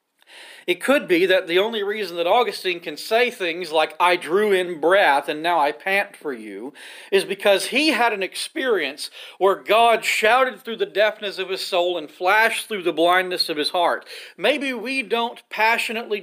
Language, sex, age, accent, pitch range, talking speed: English, male, 40-59, American, 185-235 Hz, 185 wpm